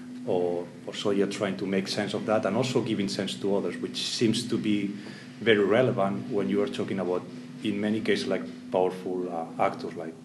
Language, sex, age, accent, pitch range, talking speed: English, male, 30-49, Spanish, 100-125 Hz, 205 wpm